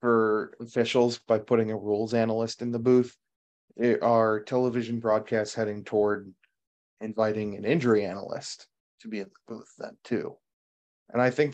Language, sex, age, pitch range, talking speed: English, male, 30-49, 110-125 Hz, 150 wpm